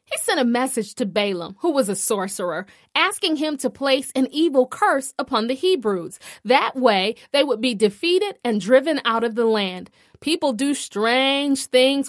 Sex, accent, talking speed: female, American, 180 wpm